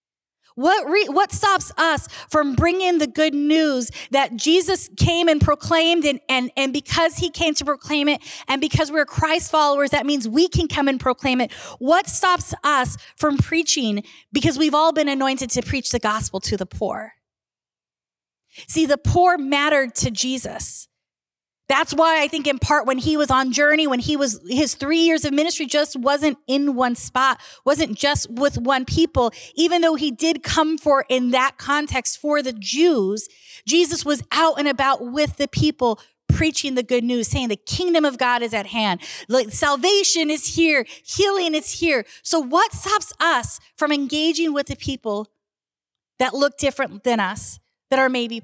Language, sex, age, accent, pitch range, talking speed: English, female, 30-49, American, 255-315 Hz, 180 wpm